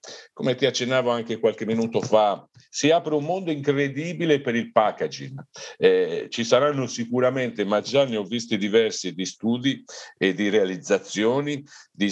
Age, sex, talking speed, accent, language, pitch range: 50-69, male, 155 wpm, native, Italian, 95-130 Hz